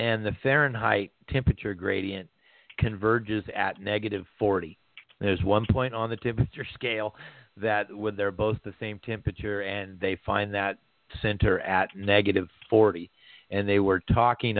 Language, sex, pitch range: English, male, 95-110 Hz